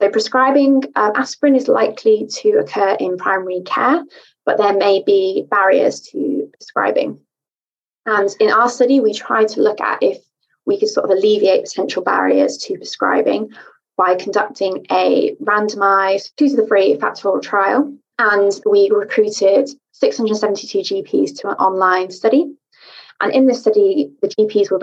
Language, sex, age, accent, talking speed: English, female, 20-39, British, 150 wpm